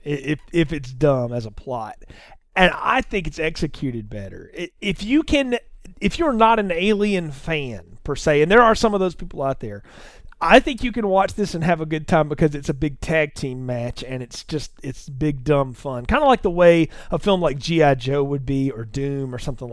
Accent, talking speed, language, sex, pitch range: American, 225 wpm, English, male, 135-195 Hz